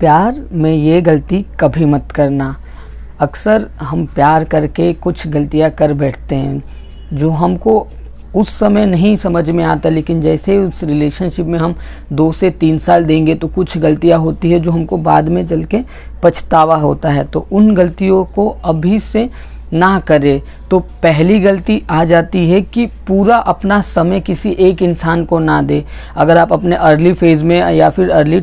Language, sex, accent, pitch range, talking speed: Hindi, female, native, 160-200 Hz, 175 wpm